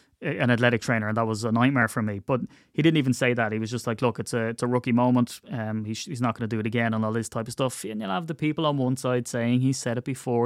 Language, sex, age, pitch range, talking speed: English, male, 20-39, 115-140 Hz, 310 wpm